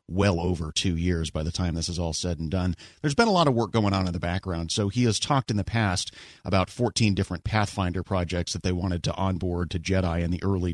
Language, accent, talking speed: English, American, 255 wpm